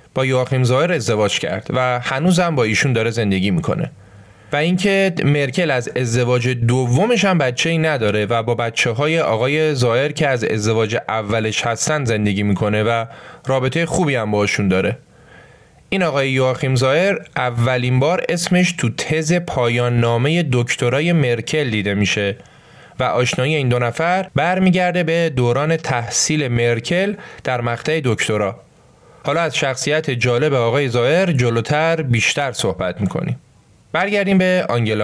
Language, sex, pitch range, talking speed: Persian, male, 120-165 Hz, 140 wpm